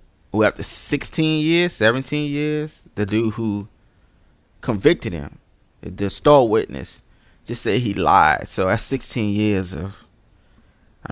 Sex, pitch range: male, 95-115 Hz